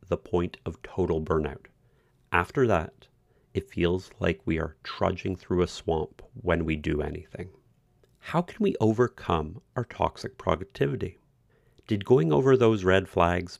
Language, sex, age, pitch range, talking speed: English, male, 40-59, 85-120 Hz, 145 wpm